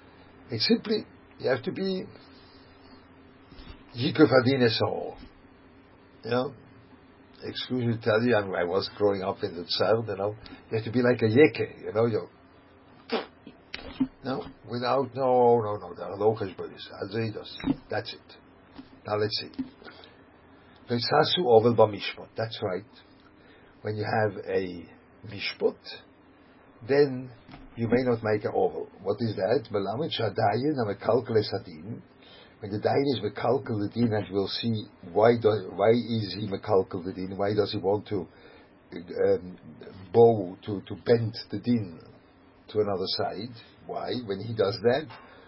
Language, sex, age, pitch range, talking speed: English, male, 60-79, 105-135 Hz, 130 wpm